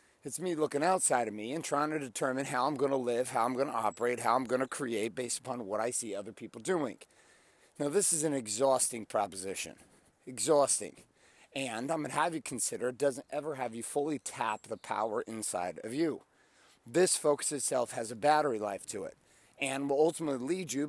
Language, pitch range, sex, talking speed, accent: English, 120-155 Hz, male, 200 wpm, American